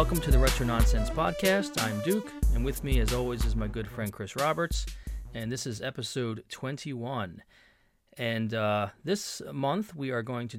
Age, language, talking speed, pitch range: 30-49, English, 180 wpm, 105-125 Hz